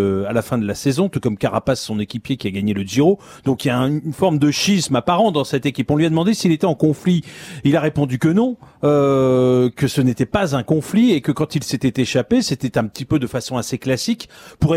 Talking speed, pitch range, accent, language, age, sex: 255 wpm, 125-155 Hz, French, French, 40-59, male